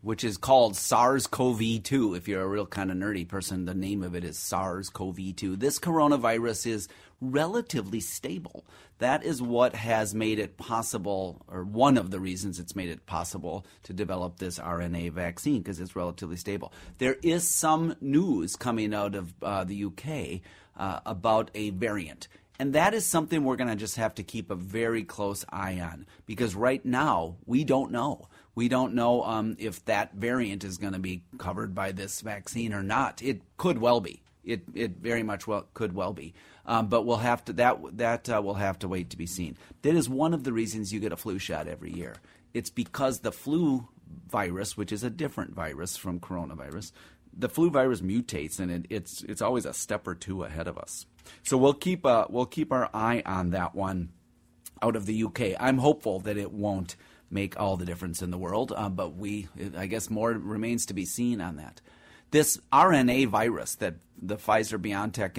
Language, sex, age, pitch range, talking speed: English, male, 30-49, 95-120 Hz, 195 wpm